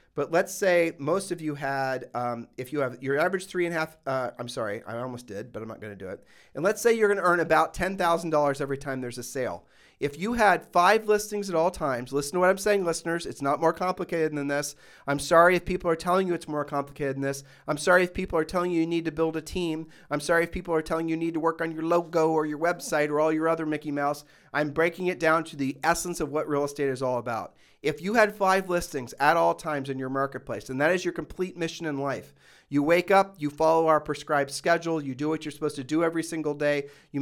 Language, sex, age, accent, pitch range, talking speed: English, male, 40-59, American, 140-170 Hz, 265 wpm